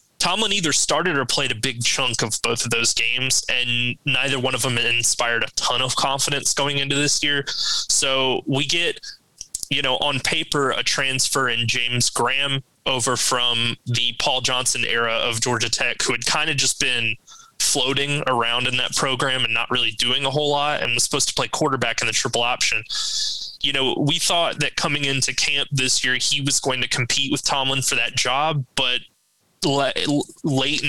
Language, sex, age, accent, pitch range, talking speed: English, male, 20-39, American, 125-145 Hz, 190 wpm